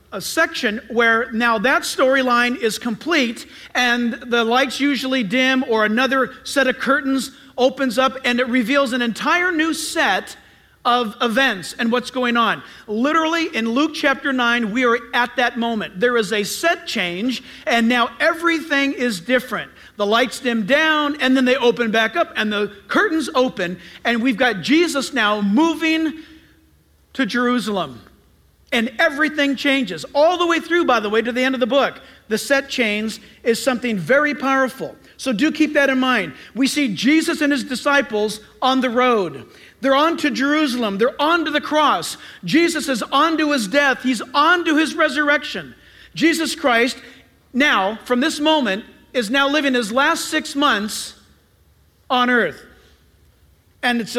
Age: 50-69